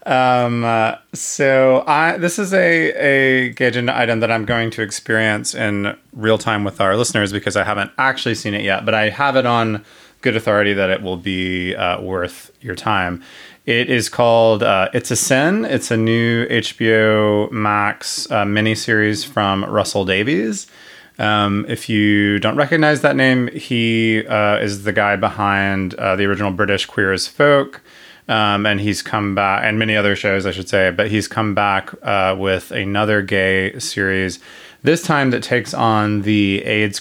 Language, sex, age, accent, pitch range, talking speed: English, male, 30-49, American, 95-115 Hz, 175 wpm